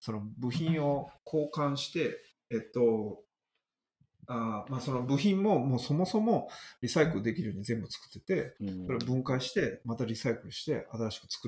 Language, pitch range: Japanese, 105-150 Hz